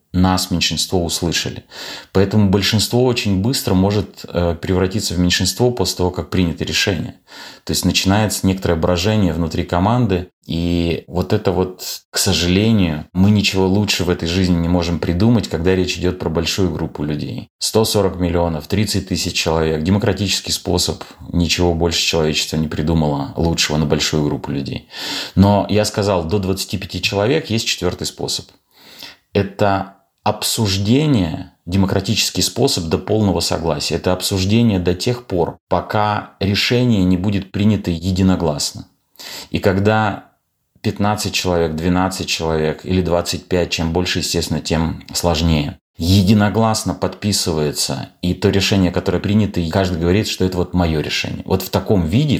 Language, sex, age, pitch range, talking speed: Russian, male, 30-49, 85-100 Hz, 140 wpm